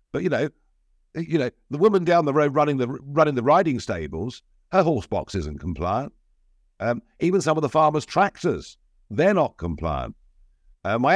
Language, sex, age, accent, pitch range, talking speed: English, male, 50-69, British, 110-170 Hz, 160 wpm